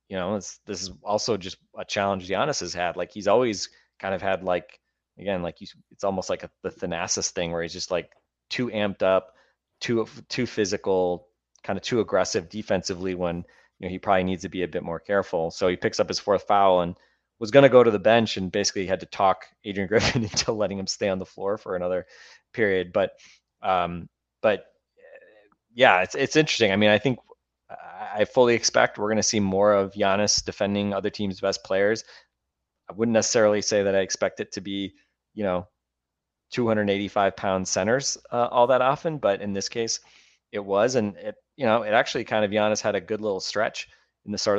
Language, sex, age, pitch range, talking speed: English, male, 20-39, 95-110 Hz, 205 wpm